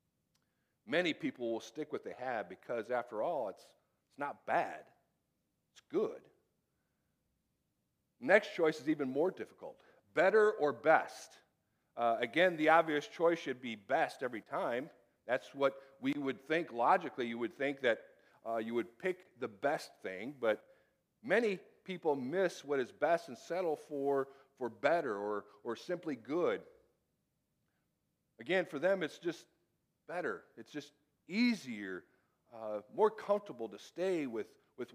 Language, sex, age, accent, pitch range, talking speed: English, male, 50-69, American, 135-195 Hz, 145 wpm